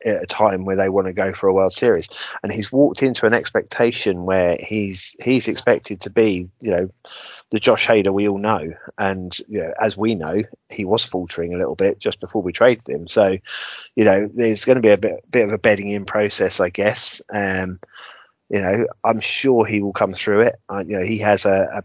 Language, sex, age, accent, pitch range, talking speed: English, male, 20-39, British, 95-110 Hz, 225 wpm